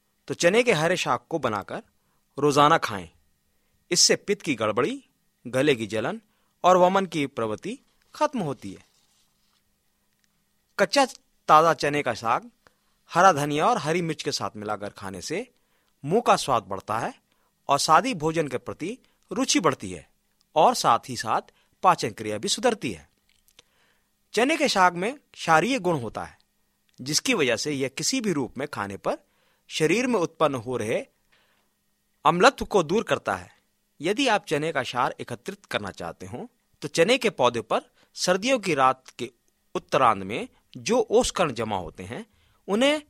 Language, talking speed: Hindi, 160 wpm